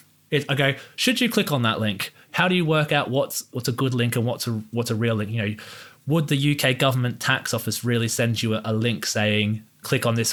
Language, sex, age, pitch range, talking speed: English, male, 20-39, 110-130 Hz, 255 wpm